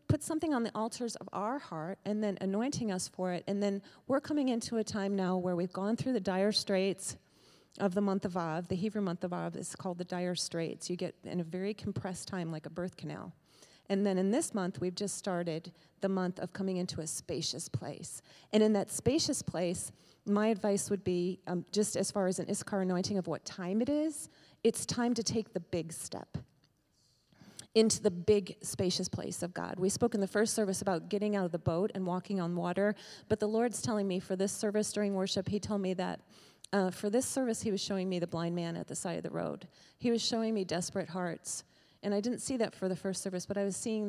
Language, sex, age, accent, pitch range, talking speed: English, female, 30-49, American, 180-210 Hz, 235 wpm